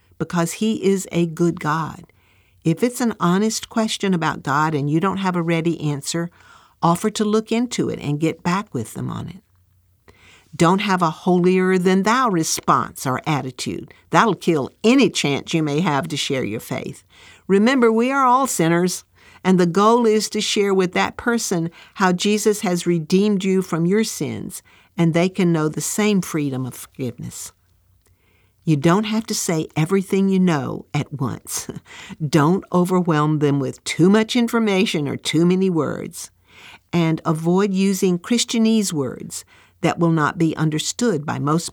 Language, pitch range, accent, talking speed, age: English, 150-195 Hz, American, 165 wpm, 50-69